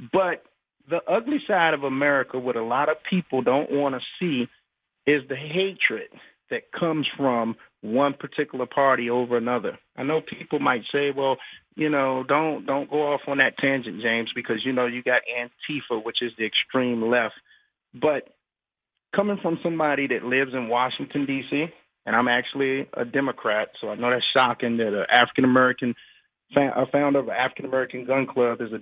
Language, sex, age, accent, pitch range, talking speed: English, male, 40-59, American, 125-155 Hz, 175 wpm